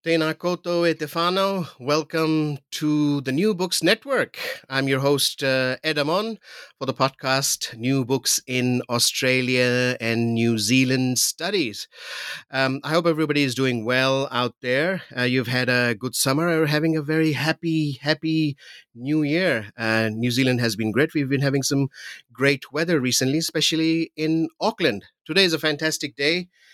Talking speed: 155 wpm